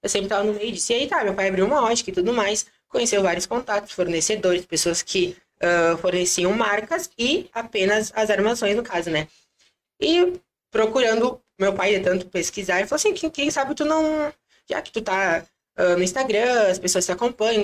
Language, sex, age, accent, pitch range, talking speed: Portuguese, female, 20-39, Brazilian, 185-235 Hz, 200 wpm